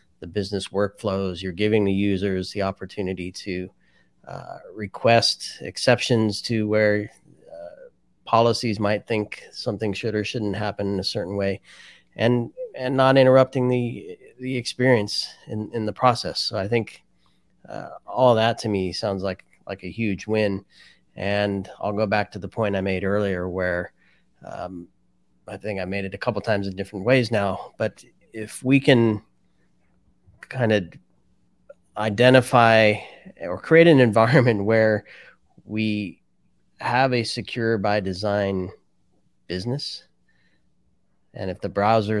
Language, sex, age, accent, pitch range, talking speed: English, male, 30-49, American, 100-115 Hz, 140 wpm